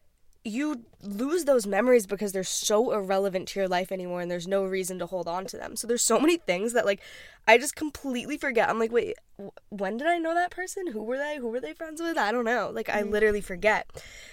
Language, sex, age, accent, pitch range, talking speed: English, female, 10-29, American, 190-245 Hz, 235 wpm